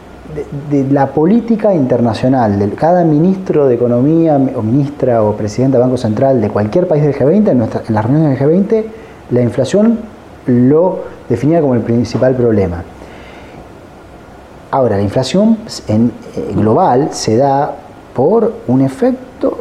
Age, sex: 30-49, male